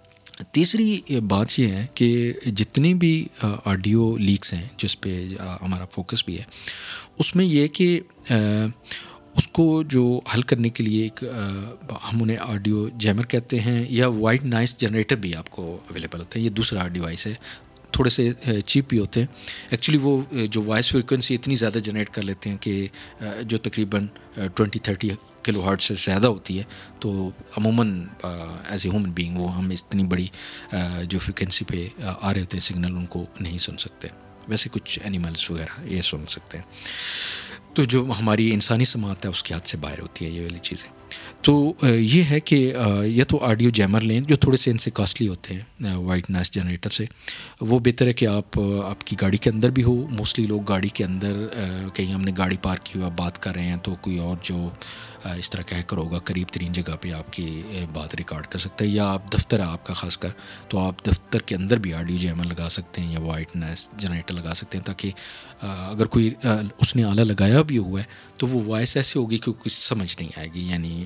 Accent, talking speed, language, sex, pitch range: Indian, 160 wpm, English, male, 90-115 Hz